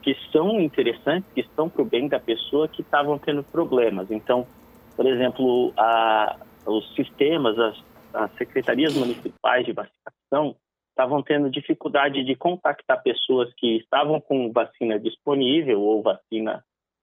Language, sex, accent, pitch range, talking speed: Portuguese, male, Brazilian, 125-155 Hz, 135 wpm